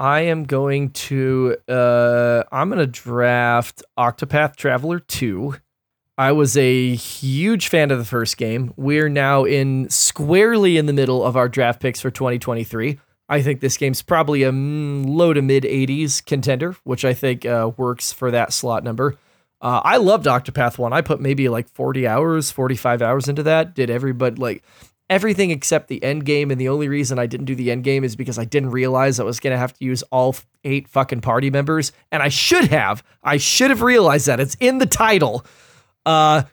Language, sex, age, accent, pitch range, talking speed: English, male, 20-39, American, 125-150 Hz, 190 wpm